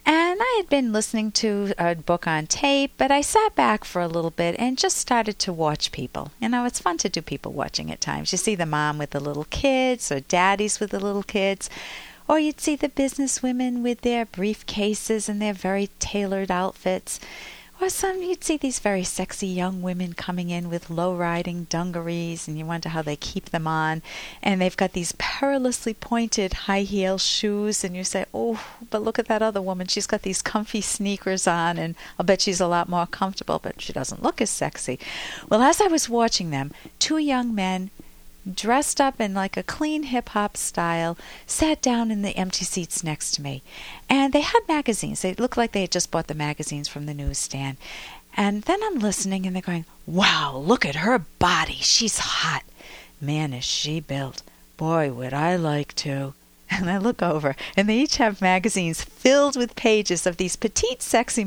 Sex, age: female, 50-69